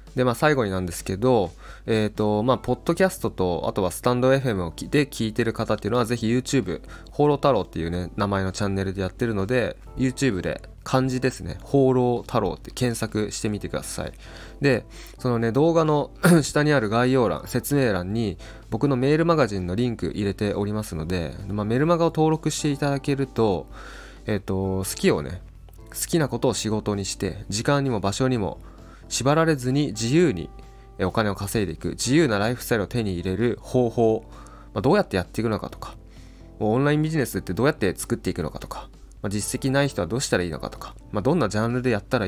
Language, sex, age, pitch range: Japanese, male, 20-39, 100-130 Hz